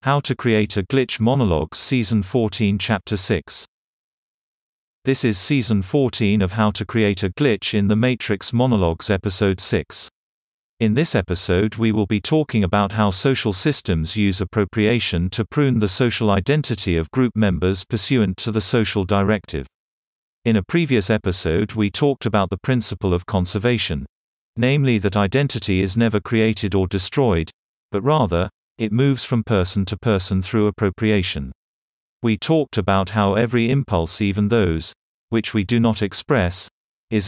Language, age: English, 40-59